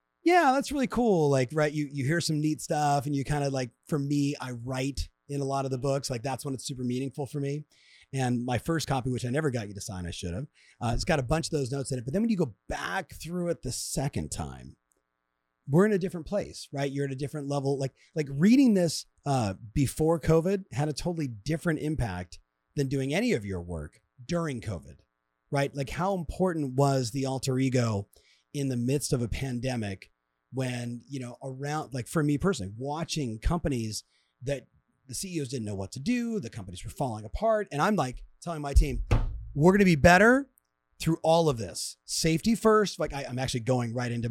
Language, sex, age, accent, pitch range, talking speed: English, male, 30-49, American, 115-160 Hz, 220 wpm